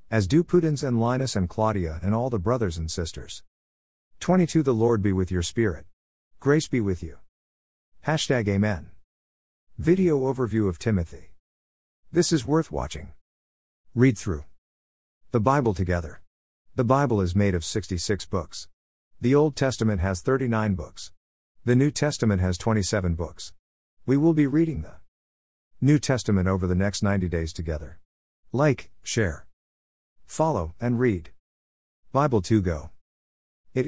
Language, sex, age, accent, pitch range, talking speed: English, male, 50-69, American, 70-120 Hz, 140 wpm